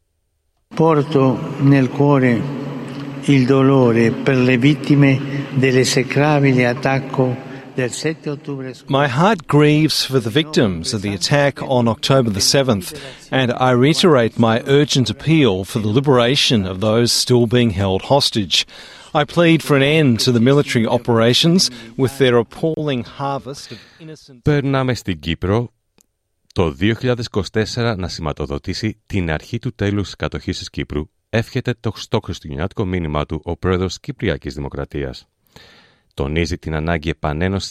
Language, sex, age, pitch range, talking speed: Greek, male, 60-79, 90-135 Hz, 110 wpm